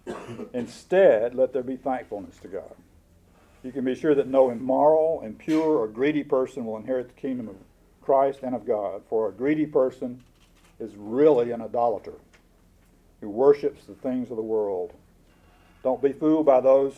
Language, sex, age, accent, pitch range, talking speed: English, male, 50-69, American, 120-150 Hz, 165 wpm